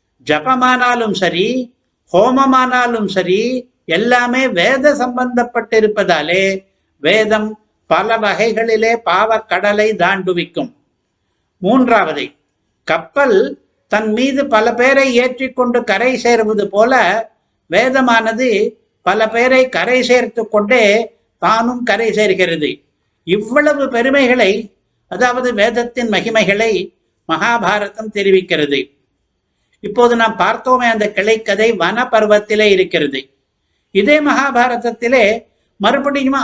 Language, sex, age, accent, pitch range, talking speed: Tamil, male, 60-79, native, 200-255 Hz, 85 wpm